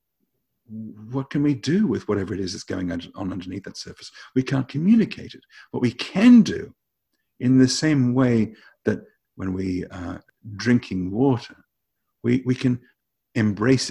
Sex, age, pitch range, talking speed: male, 50-69, 95-130 Hz, 155 wpm